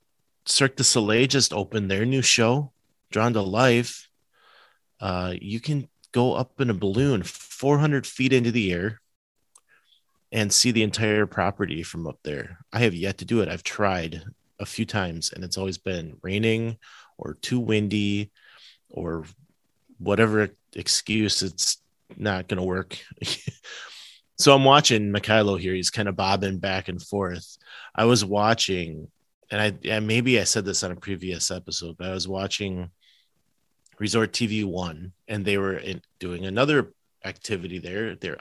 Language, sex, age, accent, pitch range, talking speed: English, male, 30-49, American, 95-115 Hz, 160 wpm